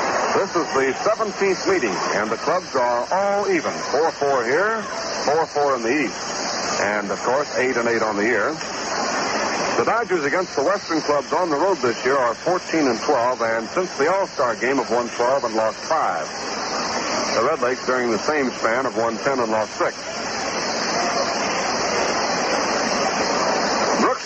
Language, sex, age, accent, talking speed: English, male, 60-79, American, 160 wpm